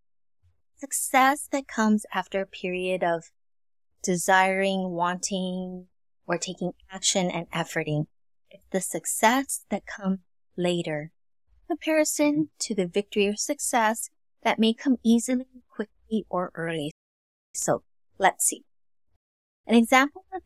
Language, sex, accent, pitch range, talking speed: English, female, American, 170-220 Hz, 115 wpm